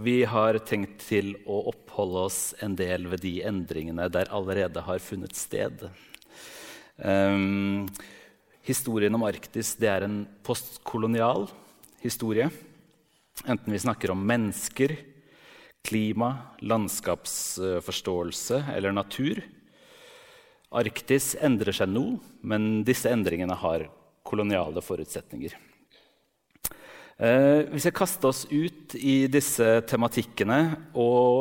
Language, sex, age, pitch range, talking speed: Danish, male, 40-59, 100-135 Hz, 105 wpm